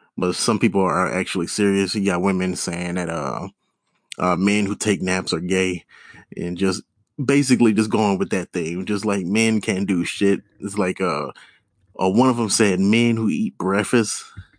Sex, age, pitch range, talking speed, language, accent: male, 20-39, 95-125 Hz, 175 wpm, English, American